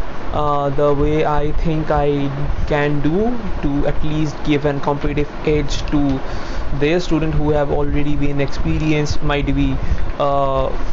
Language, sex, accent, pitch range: English, male, Indian, 135-150 Hz